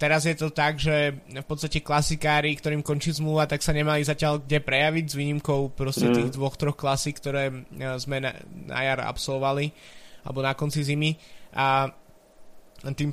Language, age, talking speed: Slovak, 20-39, 155 wpm